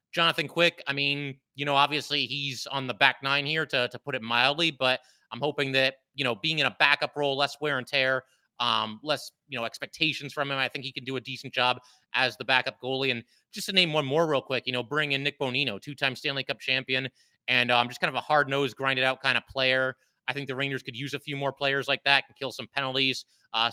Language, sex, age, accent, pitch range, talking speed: English, male, 30-49, American, 130-150 Hz, 250 wpm